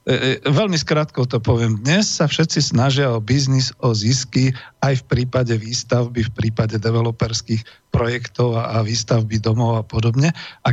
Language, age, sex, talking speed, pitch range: Slovak, 50-69, male, 145 wpm, 115-135 Hz